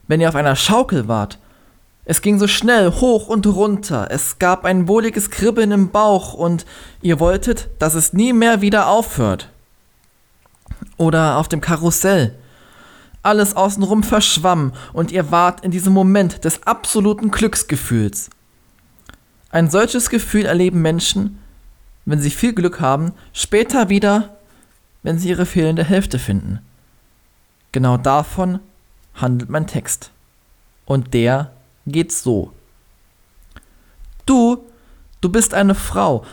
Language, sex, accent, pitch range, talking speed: German, male, German, 150-205 Hz, 125 wpm